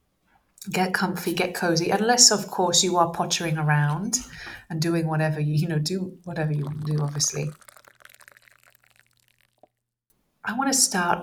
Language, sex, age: English, female, 30-49